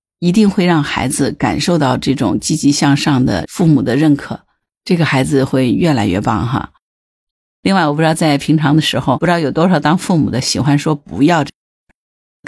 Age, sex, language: 50-69, female, Chinese